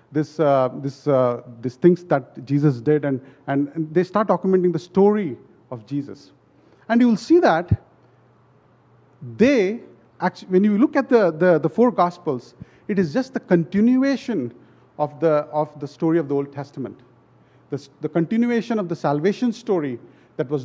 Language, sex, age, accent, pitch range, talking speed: English, male, 40-59, Indian, 140-195 Hz, 165 wpm